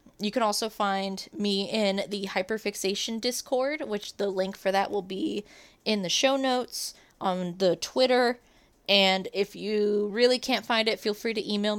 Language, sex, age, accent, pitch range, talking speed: English, female, 20-39, American, 190-225 Hz, 175 wpm